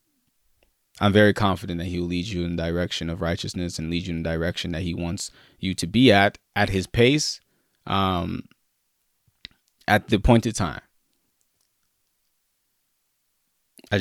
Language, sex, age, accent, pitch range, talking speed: English, male, 20-39, American, 90-105 Hz, 155 wpm